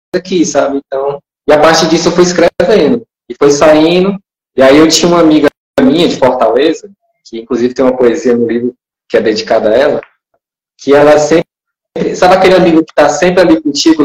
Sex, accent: male, Brazilian